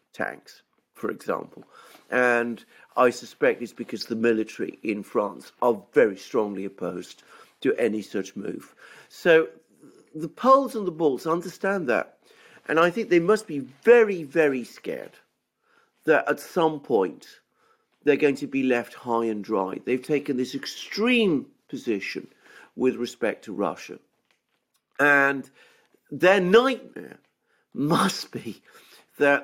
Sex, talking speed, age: male, 130 wpm, 50-69